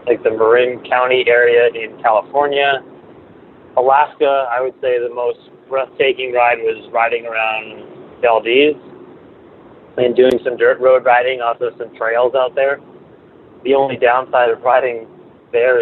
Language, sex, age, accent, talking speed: English, male, 30-49, American, 135 wpm